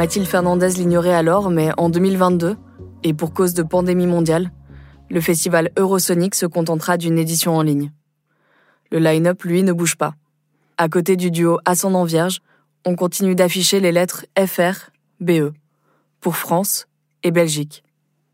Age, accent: 20-39, French